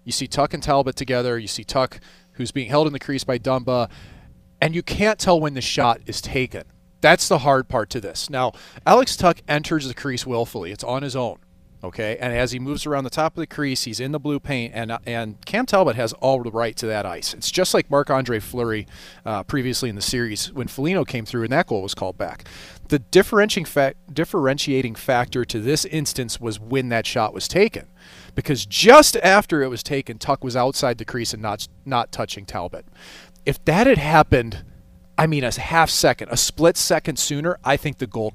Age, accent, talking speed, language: 30-49, American, 210 wpm, English